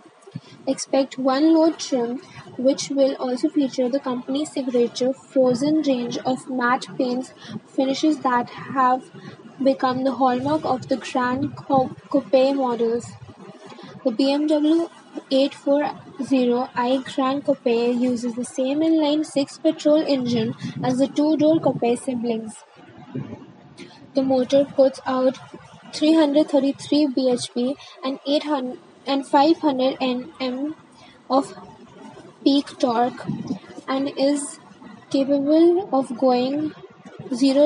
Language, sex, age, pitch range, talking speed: English, female, 20-39, 255-285 Hz, 100 wpm